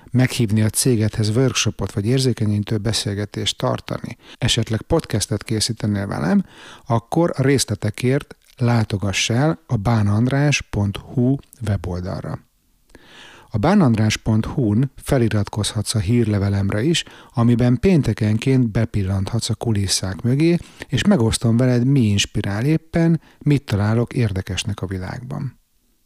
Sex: male